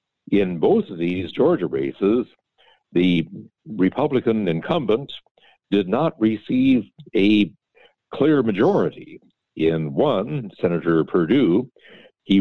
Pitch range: 80-105 Hz